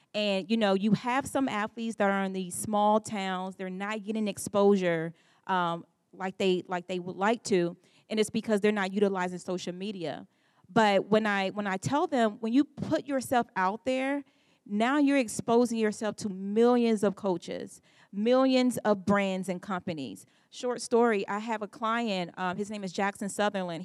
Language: English